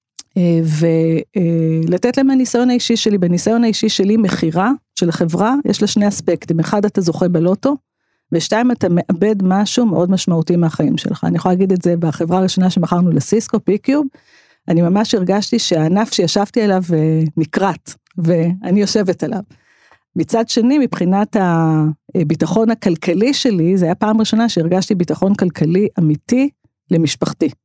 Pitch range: 175-220 Hz